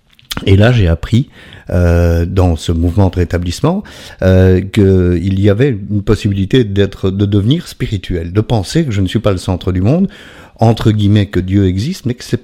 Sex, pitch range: male, 90-115 Hz